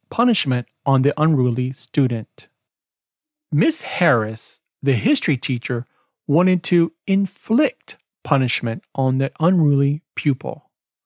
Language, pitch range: English, 135-190 Hz